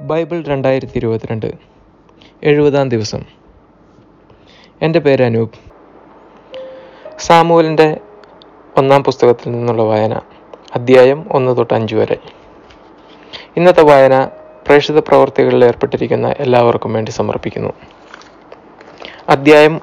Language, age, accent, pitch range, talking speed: Malayalam, 20-39, native, 120-145 Hz, 80 wpm